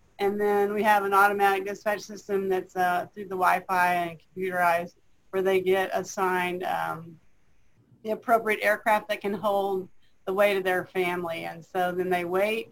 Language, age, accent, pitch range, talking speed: English, 30-49, American, 185-205 Hz, 170 wpm